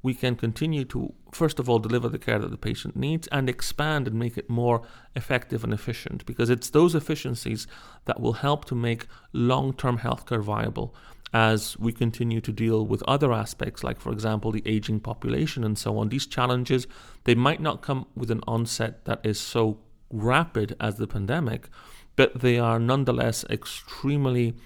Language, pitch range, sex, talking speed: English, 110-130 Hz, male, 180 wpm